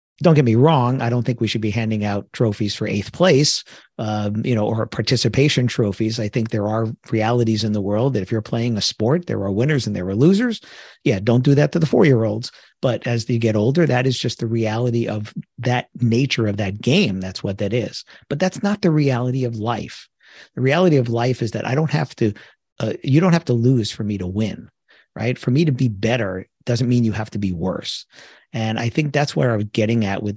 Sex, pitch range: male, 105-130 Hz